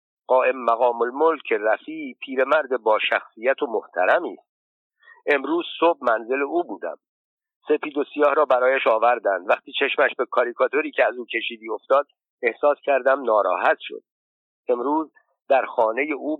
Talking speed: 140 wpm